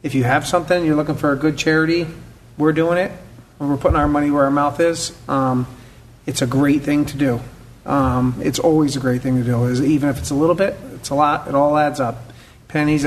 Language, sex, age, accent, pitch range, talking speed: English, male, 40-59, American, 130-150 Hz, 230 wpm